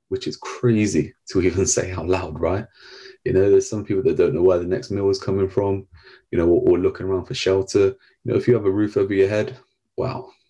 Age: 30-49